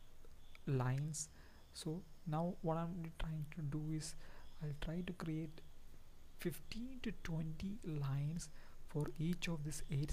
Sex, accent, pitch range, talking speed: male, Indian, 145-170 Hz, 130 wpm